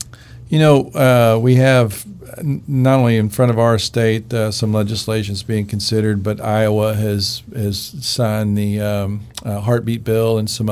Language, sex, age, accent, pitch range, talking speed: English, male, 50-69, American, 105-120 Hz, 170 wpm